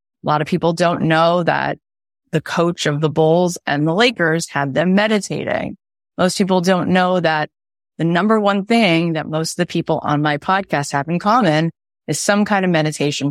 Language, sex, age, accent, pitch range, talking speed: English, female, 30-49, American, 150-180 Hz, 195 wpm